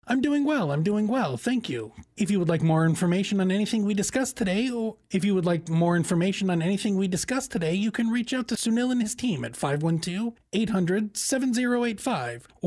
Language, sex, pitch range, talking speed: English, male, 165-220 Hz, 200 wpm